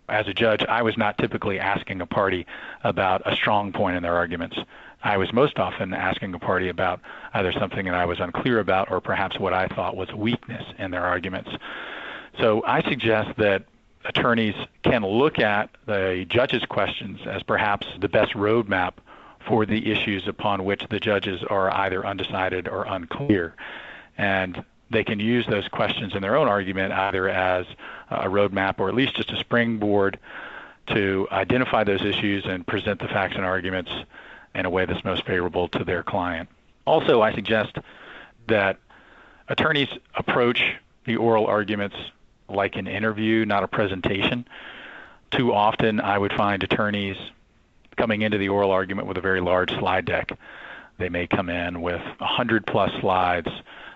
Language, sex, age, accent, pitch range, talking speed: English, male, 40-59, American, 95-110 Hz, 165 wpm